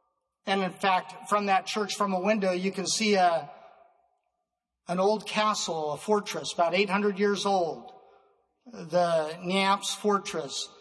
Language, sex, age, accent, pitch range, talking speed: English, male, 50-69, American, 180-205 Hz, 145 wpm